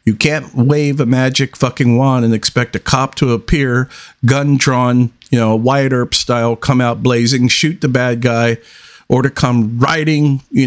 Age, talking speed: 50-69, 180 wpm